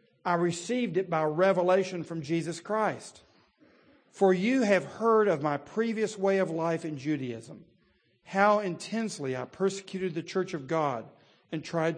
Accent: American